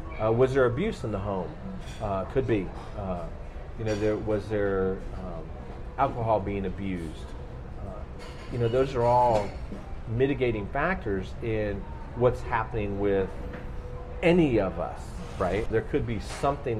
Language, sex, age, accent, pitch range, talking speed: English, male, 40-59, American, 90-115 Hz, 140 wpm